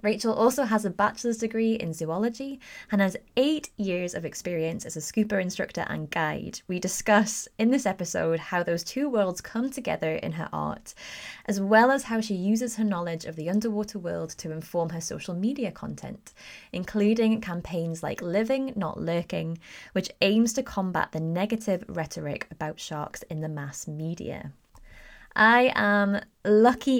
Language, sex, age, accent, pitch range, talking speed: English, female, 20-39, British, 170-235 Hz, 165 wpm